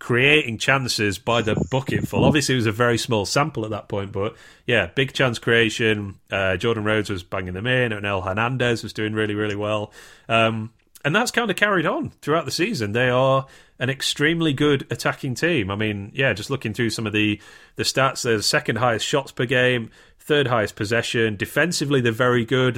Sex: male